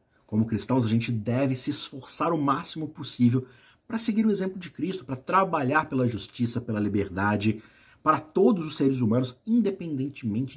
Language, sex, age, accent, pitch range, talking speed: Portuguese, male, 50-69, Brazilian, 110-155 Hz, 160 wpm